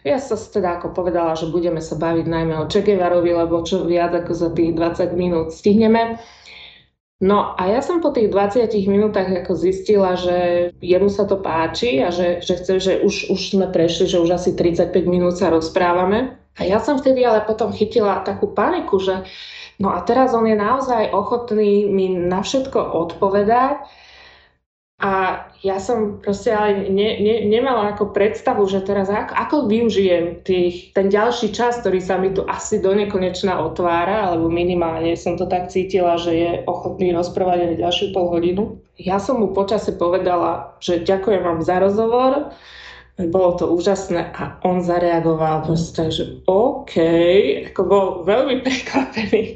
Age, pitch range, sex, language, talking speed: 20-39, 175-210 Hz, female, Slovak, 165 wpm